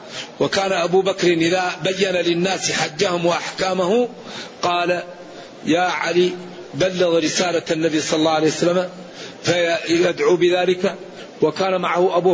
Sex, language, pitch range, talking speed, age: male, Arabic, 175-195 Hz, 110 wpm, 50-69